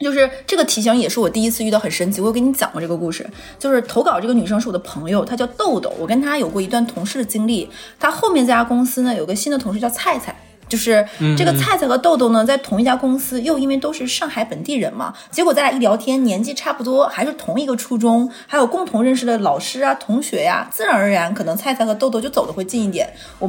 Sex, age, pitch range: female, 20-39, 215-275 Hz